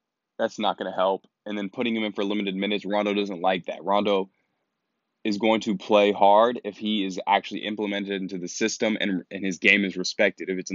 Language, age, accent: English, 20-39, American